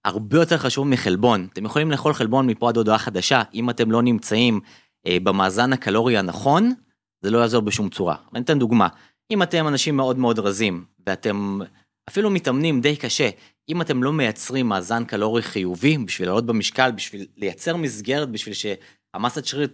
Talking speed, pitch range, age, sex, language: 165 wpm, 105-145 Hz, 30-49, male, Hebrew